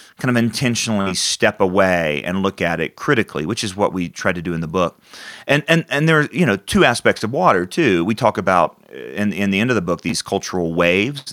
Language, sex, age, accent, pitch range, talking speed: English, male, 30-49, American, 90-105 Hz, 240 wpm